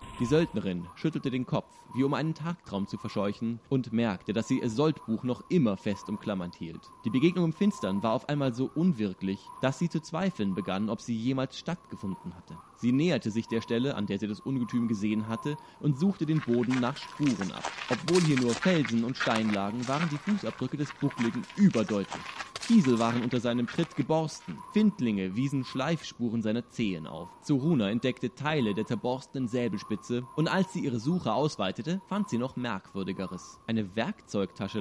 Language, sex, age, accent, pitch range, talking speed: German, male, 20-39, German, 110-155 Hz, 180 wpm